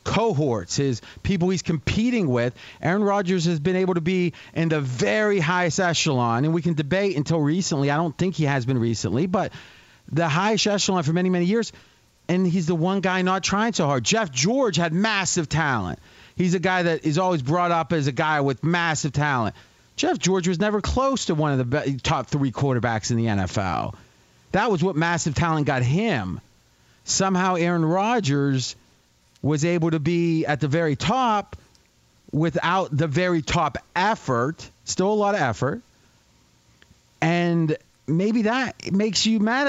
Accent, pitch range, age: American, 130-185 Hz, 30-49